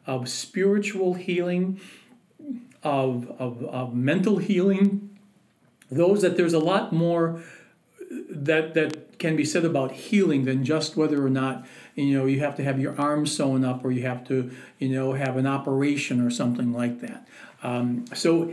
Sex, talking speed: male, 165 wpm